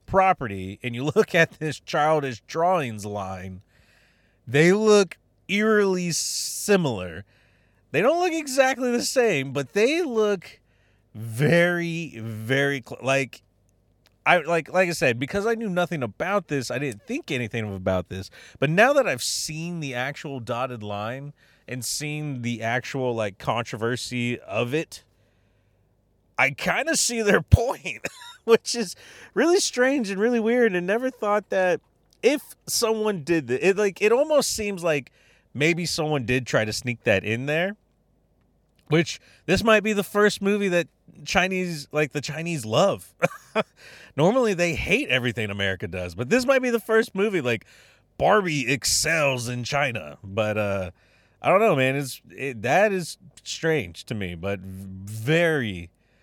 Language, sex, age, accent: English, male, 30-49, American